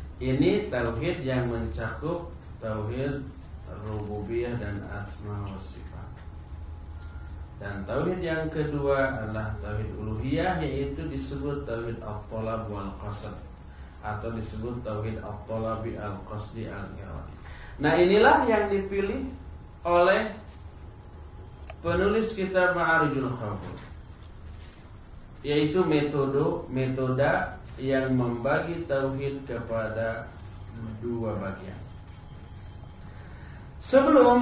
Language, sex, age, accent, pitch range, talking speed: Indonesian, male, 40-59, native, 95-165 Hz, 80 wpm